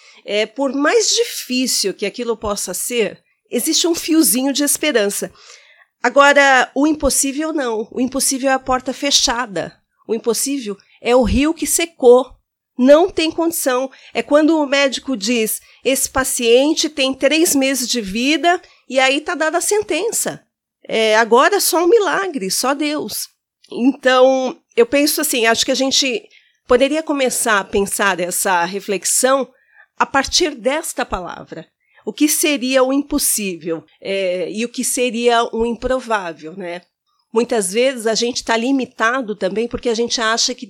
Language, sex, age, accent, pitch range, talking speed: Portuguese, female, 40-59, Brazilian, 220-280 Hz, 150 wpm